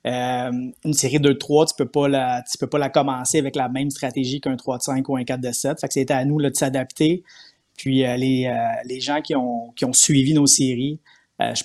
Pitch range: 125-140 Hz